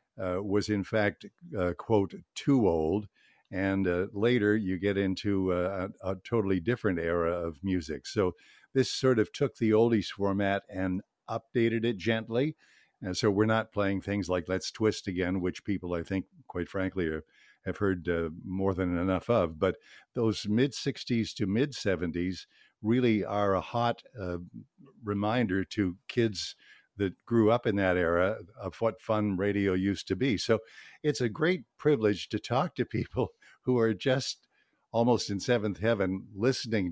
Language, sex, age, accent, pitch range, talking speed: English, male, 60-79, American, 95-110 Hz, 165 wpm